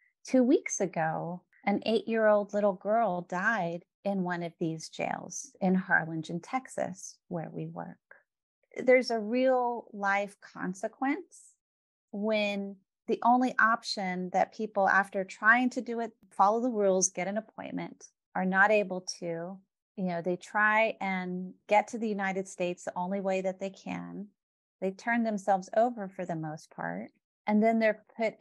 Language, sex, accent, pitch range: English, female, American, 180-225 Hz